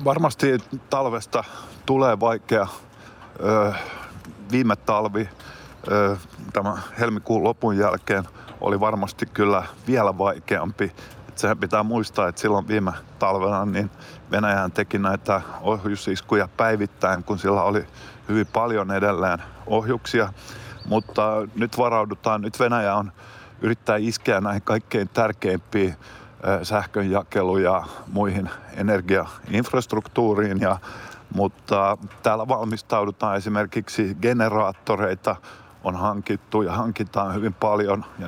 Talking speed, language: 100 wpm, Finnish